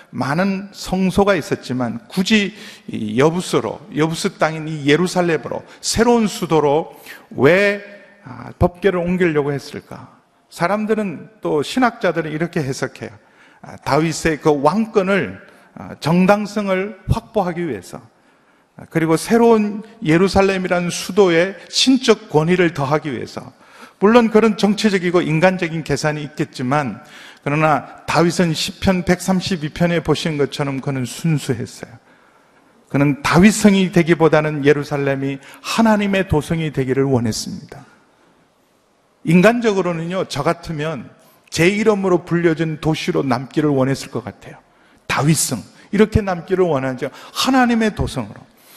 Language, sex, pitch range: Korean, male, 150-200 Hz